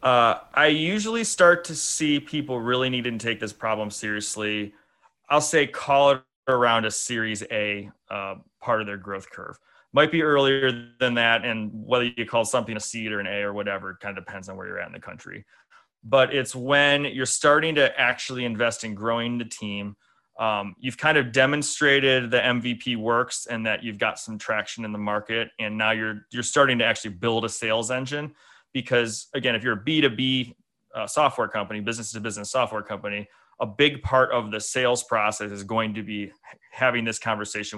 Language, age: English, 30-49